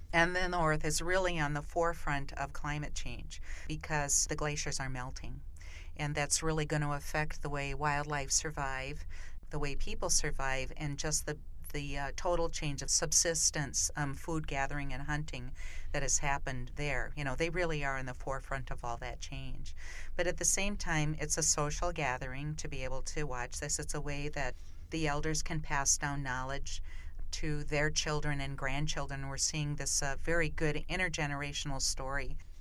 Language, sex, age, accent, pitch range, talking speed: English, female, 50-69, American, 130-150 Hz, 180 wpm